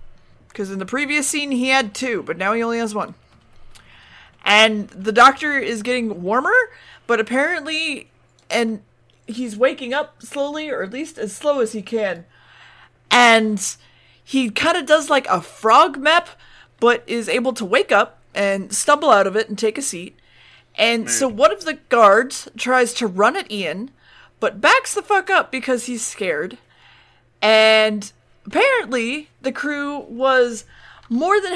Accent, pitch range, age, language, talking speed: American, 220-300 Hz, 30-49, English, 160 wpm